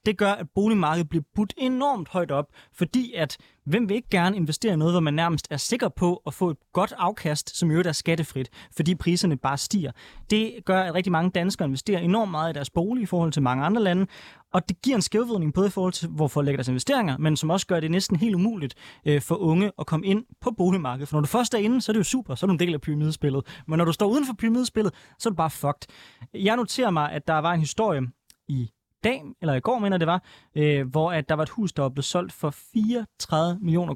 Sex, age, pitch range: male, 20-39, 145-195 Hz